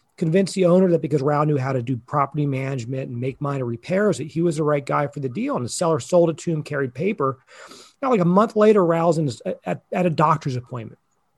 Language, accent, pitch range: English, American, 135-195 Hz